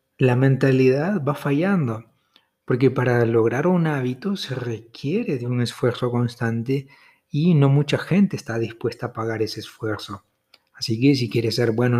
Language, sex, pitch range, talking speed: Spanish, male, 115-145 Hz, 155 wpm